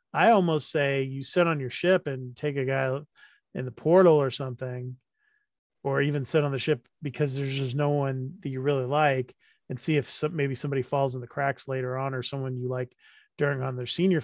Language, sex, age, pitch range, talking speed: English, male, 30-49, 130-145 Hz, 215 wpm